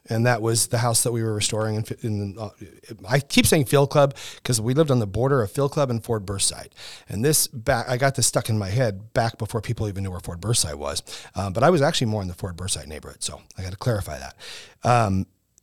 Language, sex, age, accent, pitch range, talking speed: English, male, 40-59, American, 105-140 Hz, 250 wpm